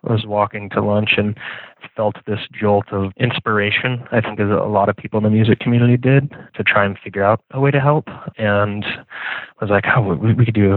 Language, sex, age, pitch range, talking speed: English, male, 20-39, 100-115 Hz, 225 wpm